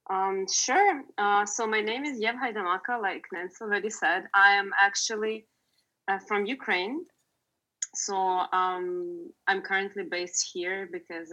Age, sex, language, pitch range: 20-39, female, English, 185-260 Hz